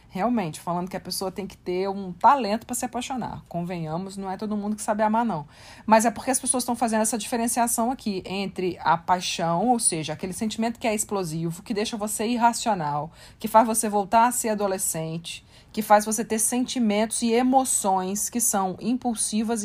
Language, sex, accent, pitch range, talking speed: Portuguese, female, Brazilian, 180-225 Hz, 190 wpm